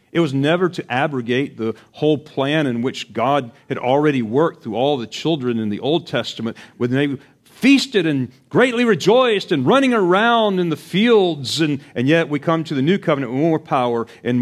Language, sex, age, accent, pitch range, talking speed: English, male, 40-59, American, 120-160 Hz, 195 wpm